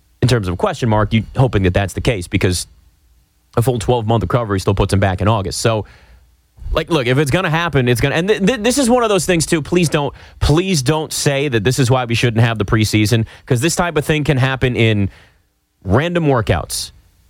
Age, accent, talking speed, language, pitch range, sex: 30-49, American, 235 wpm, English, 95-160 Hz, male